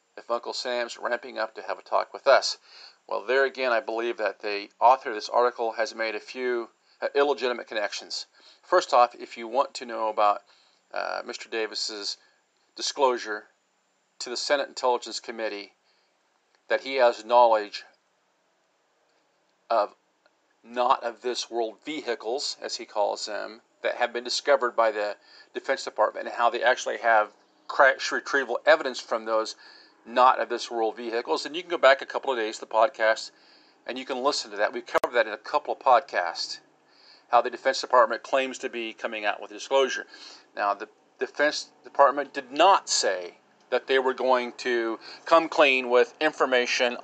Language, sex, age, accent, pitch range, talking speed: English, male, 50-69, American, 115-135 Hz, 170 wpm